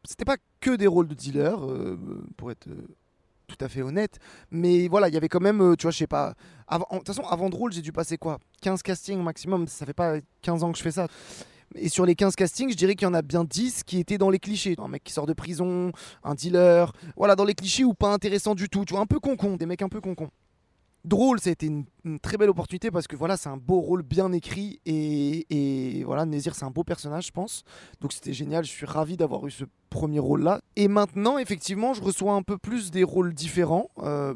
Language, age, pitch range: French, 20-39, 165-210 Hz